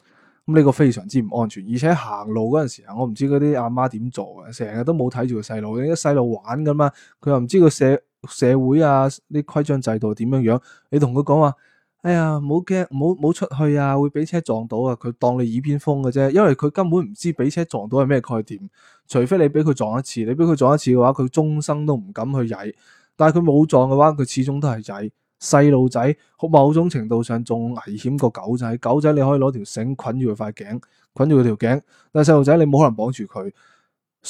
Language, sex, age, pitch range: Chinese, male, 20-39, 115-150 Hz